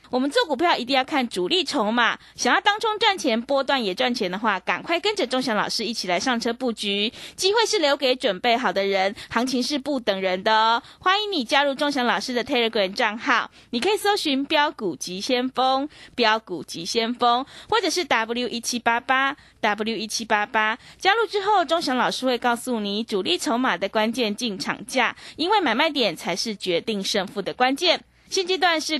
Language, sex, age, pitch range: Chinese, female, 20-39, 220-300 Hz